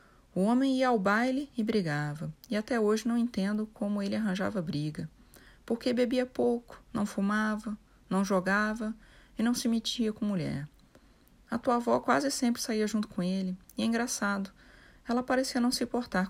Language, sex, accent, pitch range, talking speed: Portuguese, female, Brazilian, 180-220 Hz, 170 wpm